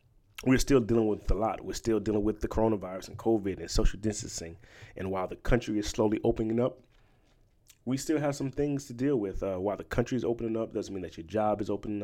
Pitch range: 100-115 Hz